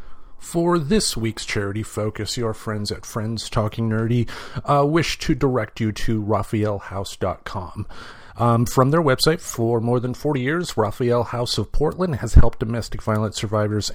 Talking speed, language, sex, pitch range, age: 150 wpm, English, male, 100-120 Hz, 40-59